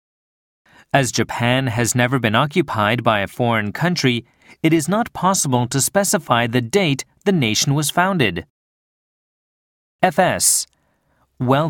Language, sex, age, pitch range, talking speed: English, male, 30-49, 120-165 Hz, 125 wpm